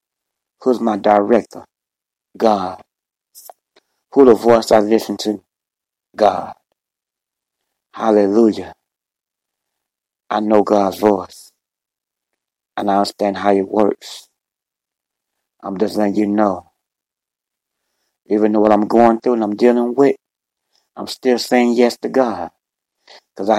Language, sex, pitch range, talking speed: English, male, 105-115 Hz, 110 wpm